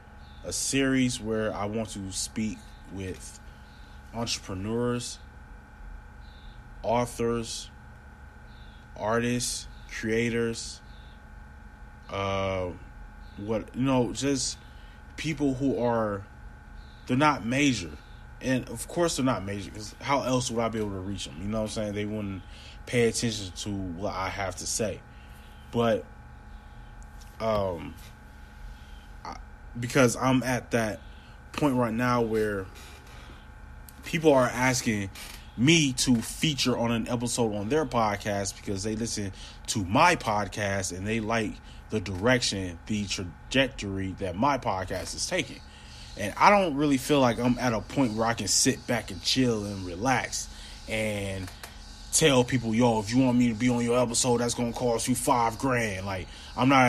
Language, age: English, 20-39